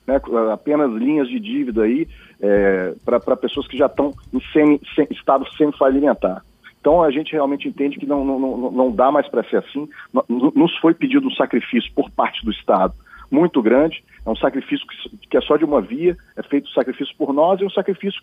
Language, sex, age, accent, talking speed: Portuguese, male, 40-59, Brazilian, 215 wpm